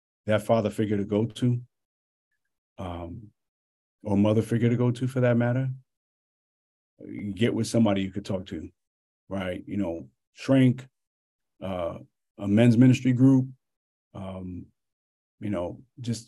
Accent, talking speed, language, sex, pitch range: American, 135 wpm, English, male, 100-115 Hz